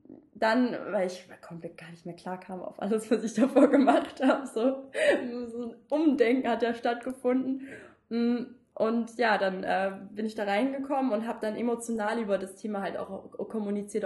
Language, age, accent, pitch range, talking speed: German, 20-39, German, 195-255 Hz, 185 wpm